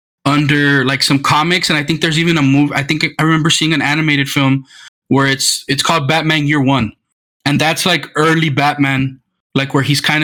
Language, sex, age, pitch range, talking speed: English, male, 20-39, 135-170 Hz, 210 wpm